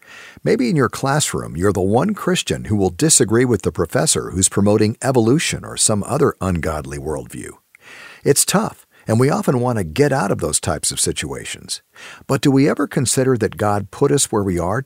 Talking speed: 195 wpm